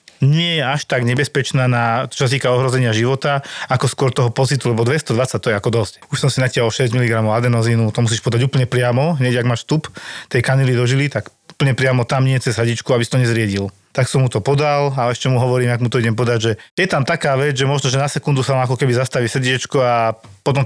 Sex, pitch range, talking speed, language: male, 120-145 Hz, 240 wpm, Slovak